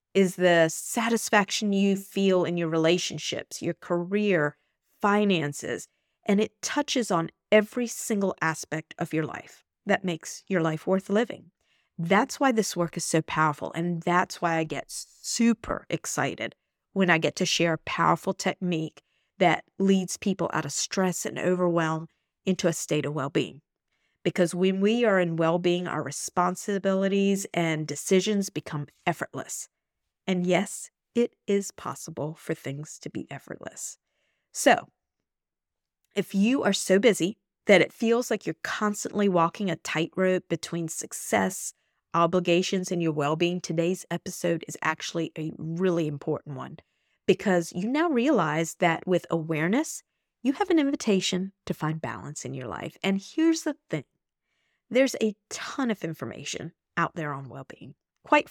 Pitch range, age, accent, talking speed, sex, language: 160-205 Hz, 50-69, American, 150 wpm, female, English